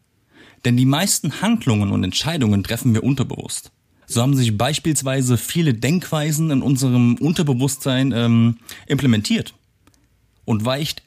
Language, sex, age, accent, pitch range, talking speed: German, male, 40-59, German, 115-145 Hz, 120 wpm